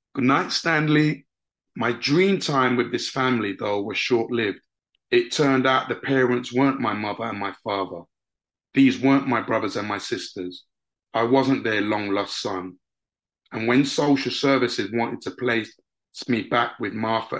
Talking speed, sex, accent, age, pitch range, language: 160 wpm, male, British, 30-49, 95-125 Hz, English